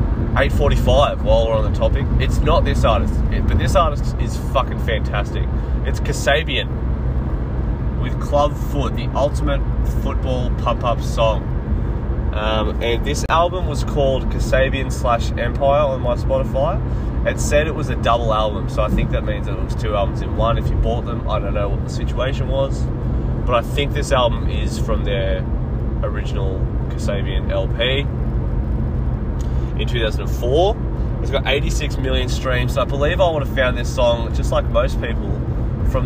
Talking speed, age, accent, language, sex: 165 wpm, 20-39, Australian, English, male